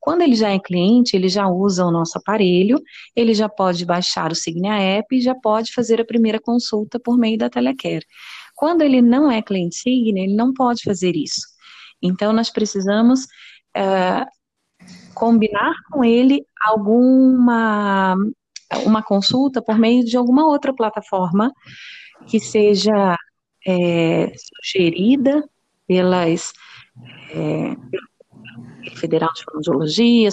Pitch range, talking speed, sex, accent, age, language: 190-245 Hz, 120 wpm, female, Brazilian, 30-49, Portuguese